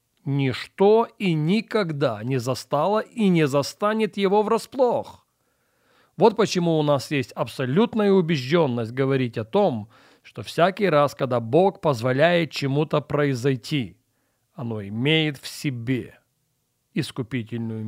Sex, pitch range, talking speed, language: male, 125-180 Hz, 110 wpm, Russian